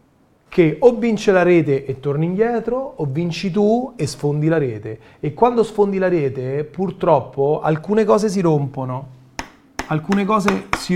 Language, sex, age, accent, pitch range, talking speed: Italian, male, 30-49, native, 145-195 Hz, 155 wpm